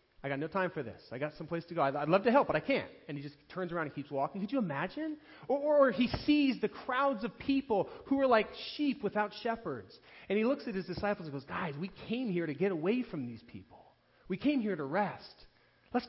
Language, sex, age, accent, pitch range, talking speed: English, male, 30-49, American, 145-240 Hz, 260 wpm